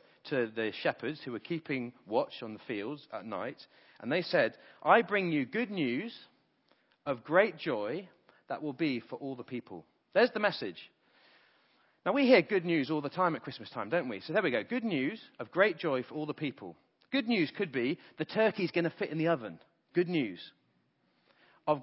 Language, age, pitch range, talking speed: English, 40-59, 125-180 Hz, 205 wpm